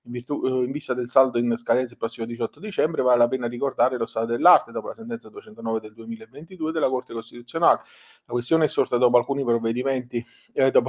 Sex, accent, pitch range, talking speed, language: male, native, 115-145 Hz, 210 wpm, Italian